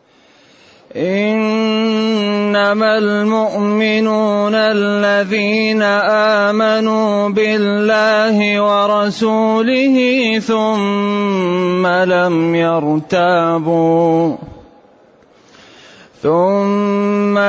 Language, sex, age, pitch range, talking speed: Arabic, male, 30-49, 180-220 Hz, 35 wpm